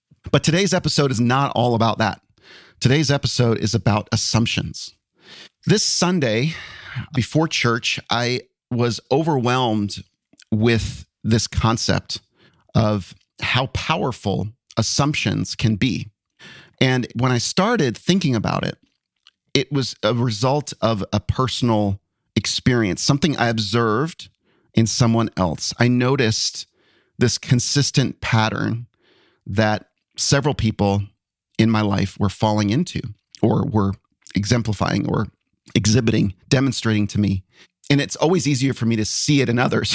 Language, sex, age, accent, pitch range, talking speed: English, male, 40-59, American, 110-140 Hz, 125 wpm